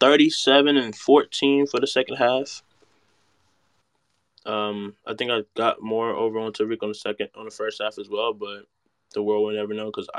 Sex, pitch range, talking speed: male, 105-115 Hz, 190 wpm